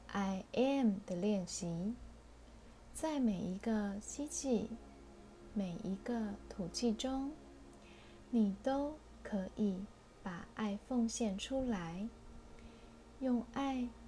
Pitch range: 195-245 Hz